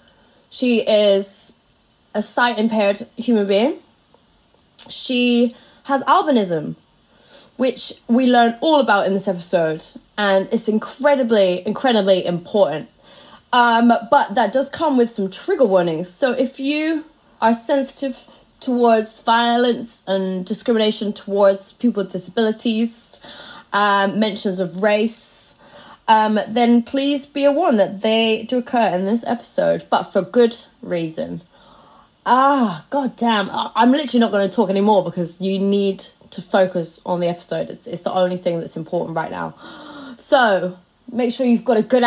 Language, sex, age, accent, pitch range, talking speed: English, female, 20-39, British, 195-255 Hz, 140 wpm